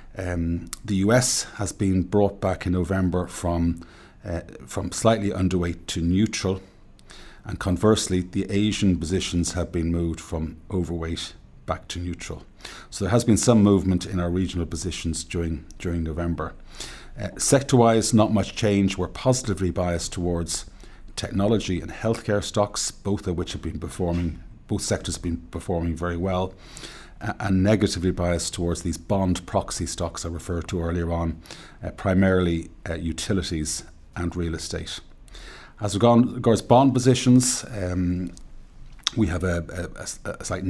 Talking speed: 150 wpm